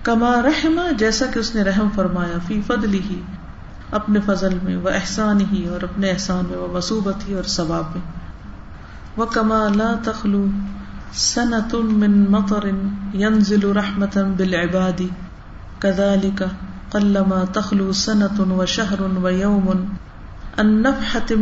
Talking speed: 120 wpm